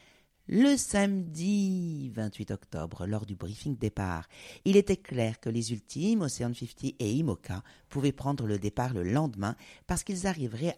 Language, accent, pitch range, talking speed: French, French, 105-165 Hz, 150 wpm